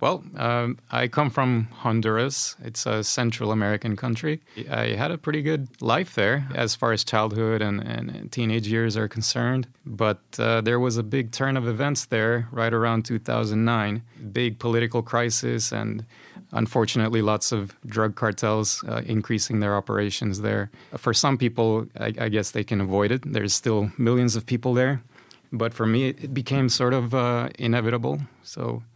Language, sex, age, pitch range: English, male, 30-49, 105-120 Hz